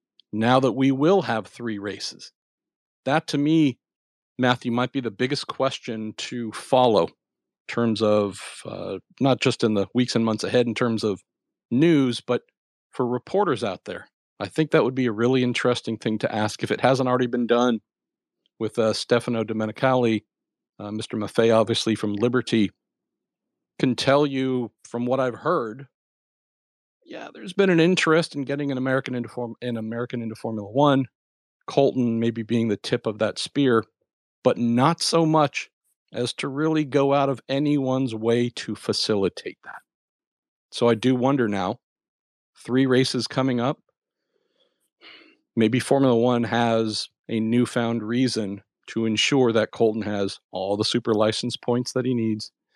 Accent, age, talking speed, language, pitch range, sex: American, 50-69, 160 wpm, English, 110-130 Hz, male